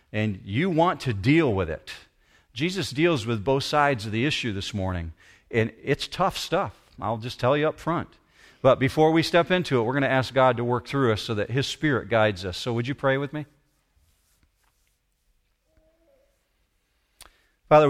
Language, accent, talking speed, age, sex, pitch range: English, American, 185 wpm, 50-69, male, 105-135 Hz